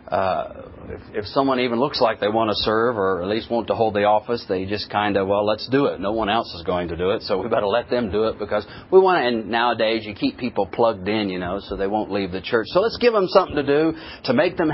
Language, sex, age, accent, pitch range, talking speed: English, male, 40-59, American, 105-140 Hz, 285 wpm